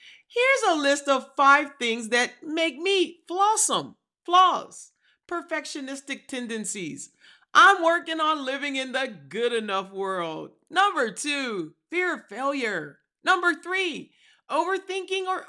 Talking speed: 120 wpm